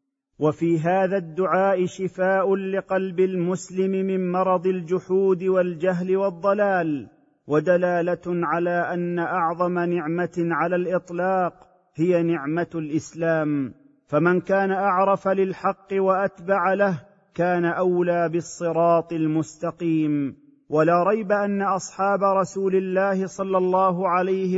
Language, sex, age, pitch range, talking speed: Arabic, male, 40-59, 160-190 Hz, 100 wpm